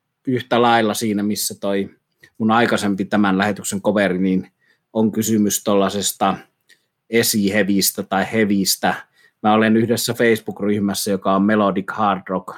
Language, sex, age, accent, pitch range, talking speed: Finnish, male, 30-49, native, 95-110 Hz, 125 wpm